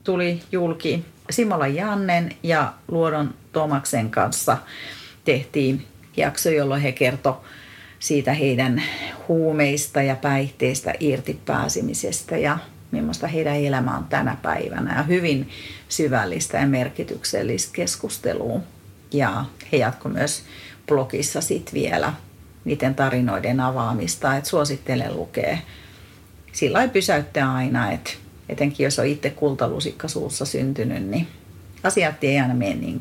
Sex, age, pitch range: female, 40-59, 130-150 Hz